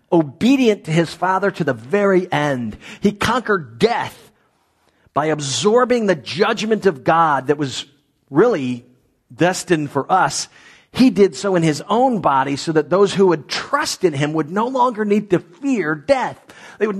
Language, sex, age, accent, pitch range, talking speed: English, male, 40-59, American, 130-200 Hz, 165 wpm